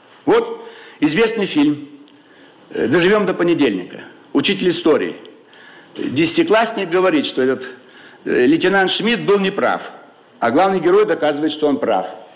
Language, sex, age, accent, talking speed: Russian, male, 60-79, native, 110 wpm